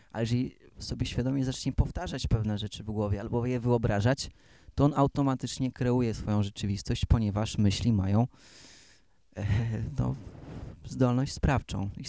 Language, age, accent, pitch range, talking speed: Polish, 20-39, native, 105-125 Hz, 135 wpm